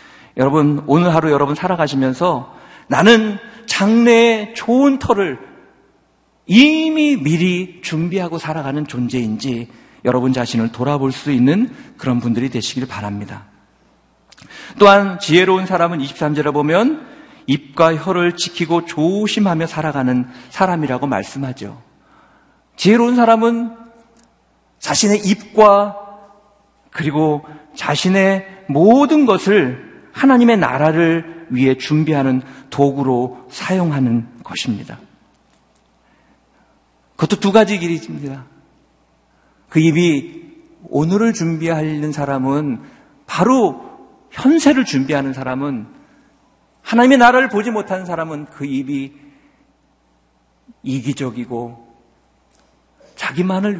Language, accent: Korean, native